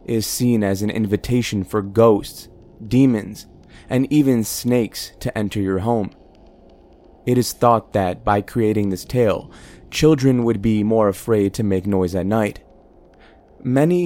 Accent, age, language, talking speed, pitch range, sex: American, 20-39, English, 145 wpm, 100-125 Hz, male